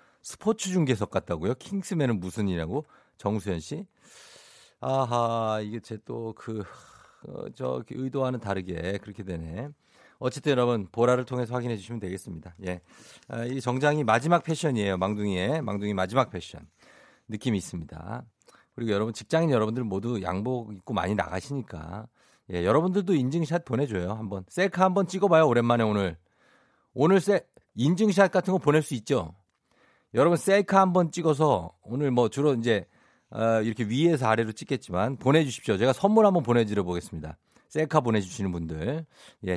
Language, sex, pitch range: Korean, male, 100-150 Hz